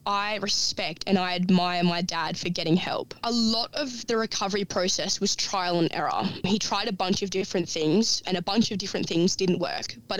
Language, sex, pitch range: English, female, 180-205 Hz